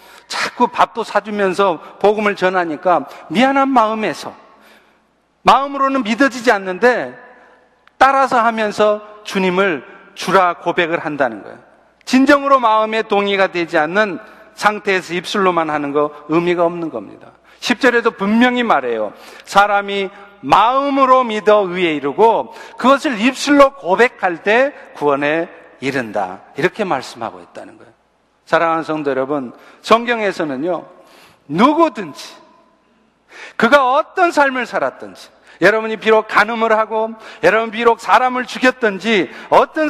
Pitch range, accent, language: 180-255 Hz, native, Korean